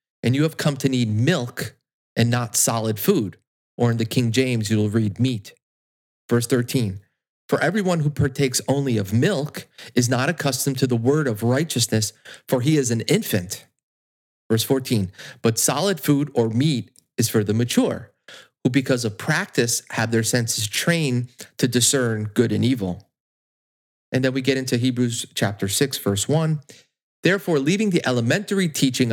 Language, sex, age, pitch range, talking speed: English, male, 30-49, 110-140 Hz, 165 wpm